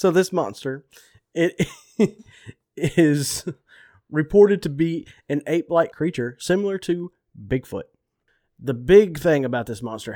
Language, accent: English, American